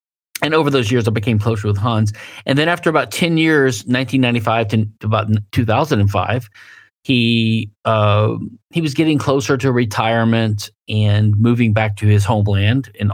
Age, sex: 40-59, male